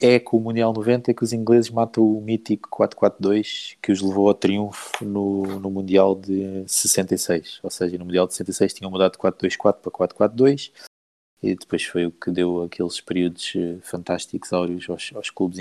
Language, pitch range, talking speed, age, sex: Portuguese, 90-115 Hz, 175 wpm, 20-39, male